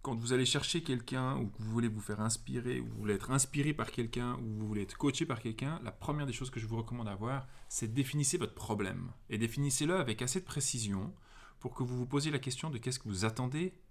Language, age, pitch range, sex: French, 30-49, 110-140 Hz, male